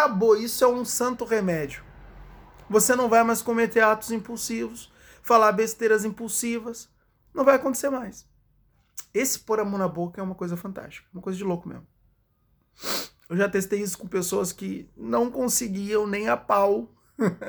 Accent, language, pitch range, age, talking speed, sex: Brazilian, Portuguese, 175-220 Hz, 20-39, 160 wpm, male